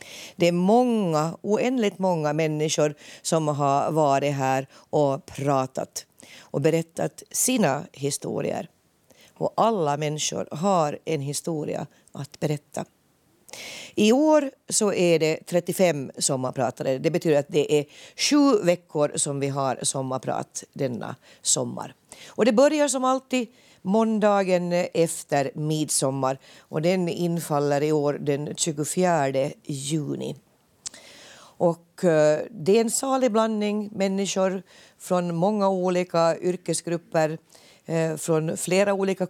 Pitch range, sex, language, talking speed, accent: 150-195 Hz, female, Swedish, 115 wpm, native